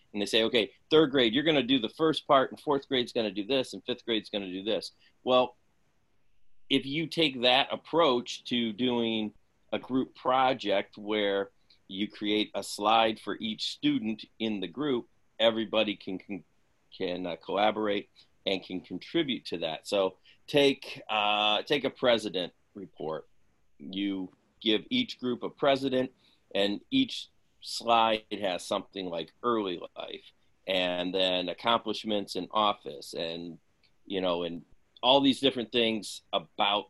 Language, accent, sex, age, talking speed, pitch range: English, American, male, 40-59, 160 wpm, 95-125 Hz